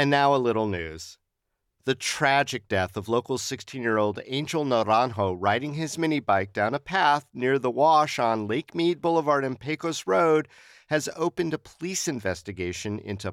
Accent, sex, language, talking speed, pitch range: American, male, English, 160 wpm, 105-150 Hz